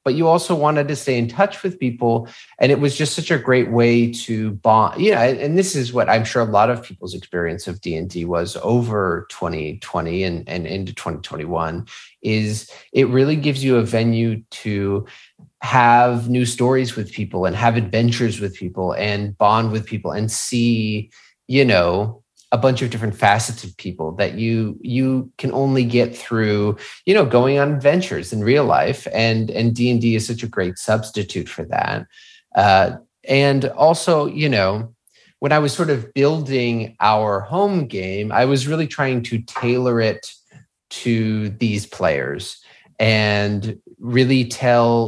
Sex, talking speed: male, 170 wpm